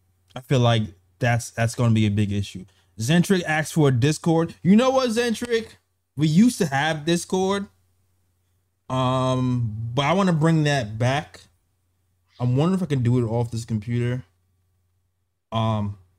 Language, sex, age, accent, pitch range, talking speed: English, male, 20-39, American, 95-130 Hz, 160 wpm